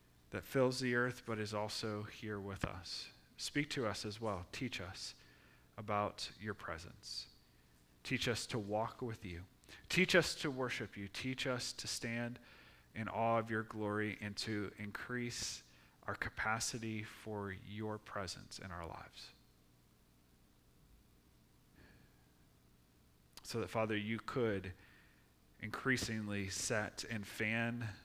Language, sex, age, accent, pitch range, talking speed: English, male, 30-49, American, 95-130 Hz, 130 wpm